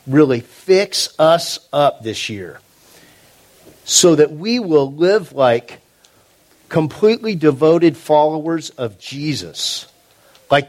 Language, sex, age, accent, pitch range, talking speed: English, male, 50-69, American, 150-210 Hz, 100 wpm